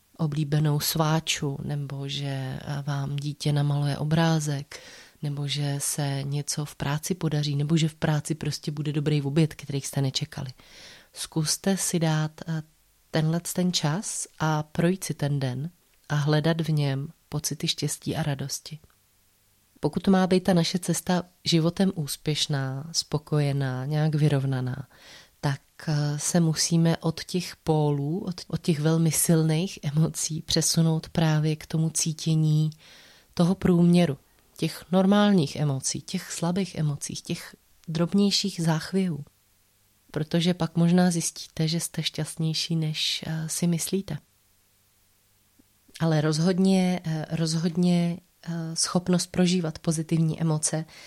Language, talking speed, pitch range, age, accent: Czech, 115 wpm, 145-170 Hz, 30-49, native